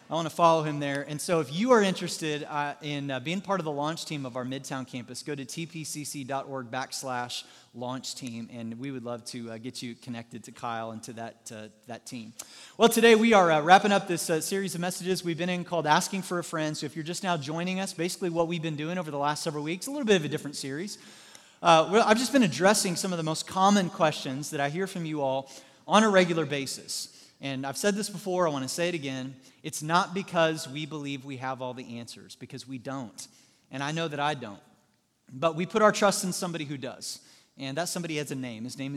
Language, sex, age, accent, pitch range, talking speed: English, male, 30-49, American, 135-180 Hz, 245 wpm